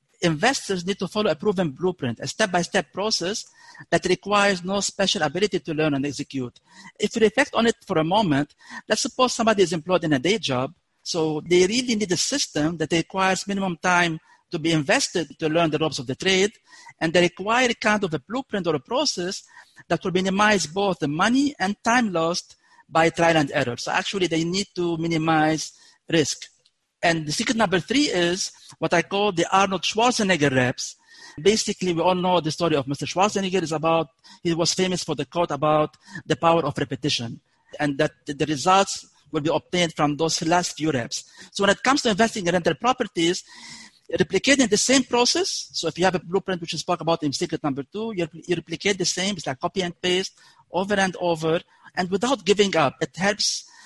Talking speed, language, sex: 200 wpm, English, male